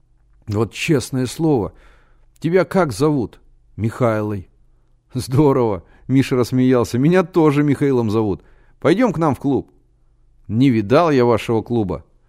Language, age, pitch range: Russian, 30-49, 100-140 Hz